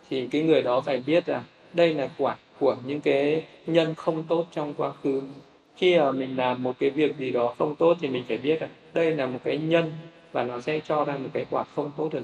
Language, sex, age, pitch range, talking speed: Vietnamese, male, 20-39, 135-155 Hz, 245 wpm